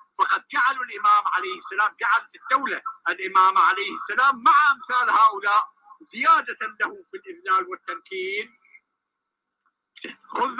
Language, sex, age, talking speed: Arabic, male, 60-79, 110 wpm